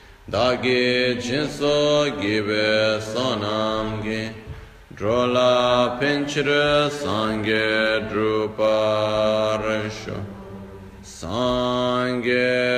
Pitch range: 100-125 Hz